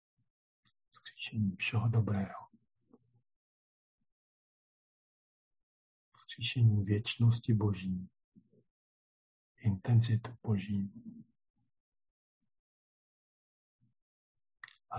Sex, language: male, Czech